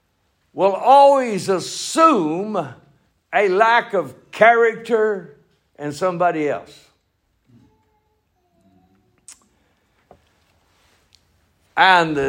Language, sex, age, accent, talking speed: English, male, 60-79, American, 55 wpm